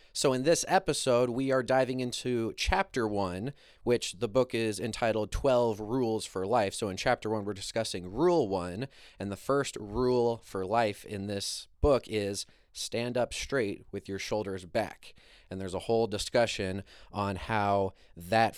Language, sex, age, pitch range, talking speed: English, male, 30-49, 100-120 Hz, 170 wpm